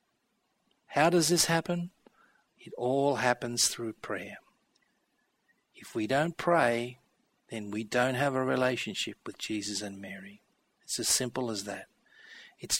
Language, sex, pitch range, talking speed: English, male, 115-145 Hz, 135 wpm